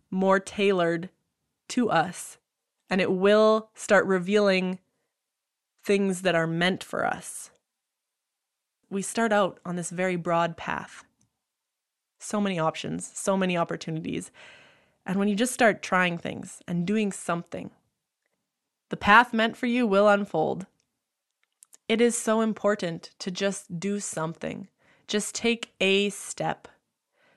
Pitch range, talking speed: 185-235 Hz, 125 wpm